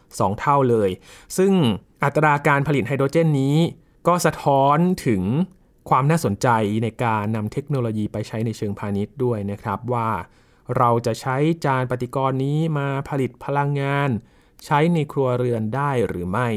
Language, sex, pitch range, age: Thai, male, 115-145 Hz, 20-39